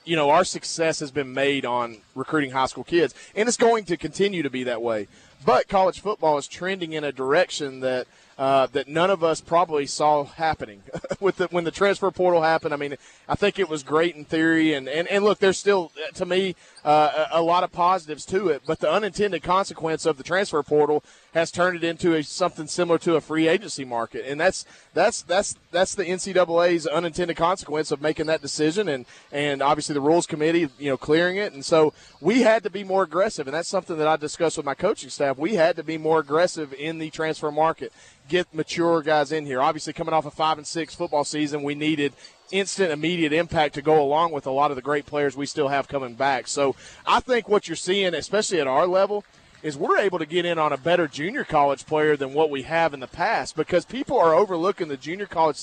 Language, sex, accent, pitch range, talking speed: English, male, American, 150-180 Hz, 230 wpm